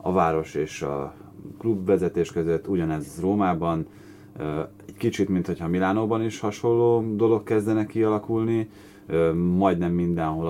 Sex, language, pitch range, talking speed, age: male, Hungarian, 80-100 Hz, 115 wpm, 30-49